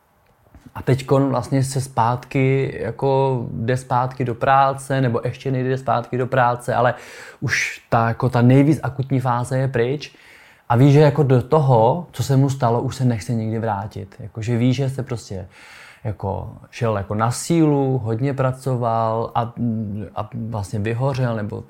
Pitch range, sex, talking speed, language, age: 115-135 Hz, male, 165 wpm, Czech, 20-39